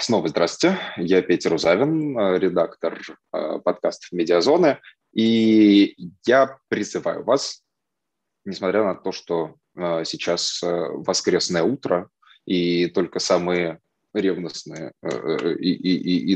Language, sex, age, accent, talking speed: Russian, male, 20-39, native, 90 wpm